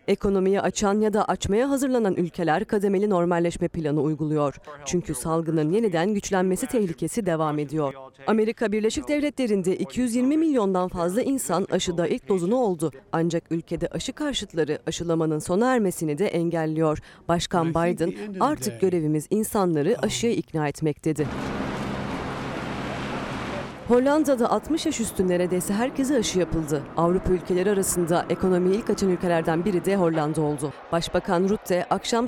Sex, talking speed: female, 130 wpm